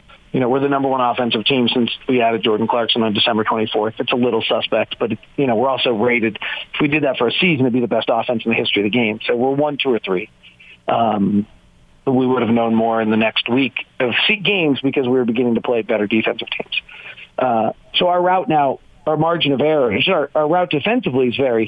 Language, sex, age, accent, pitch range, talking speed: English, male, 40-59, American, 115-155 Hz, 250 wpm